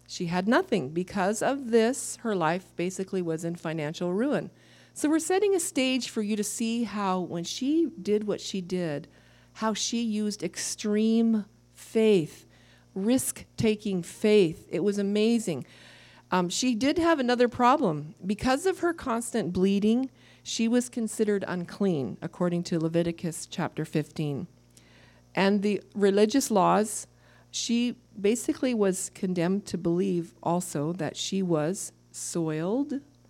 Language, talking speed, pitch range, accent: English, 135 wpm, 150-215 Hz, American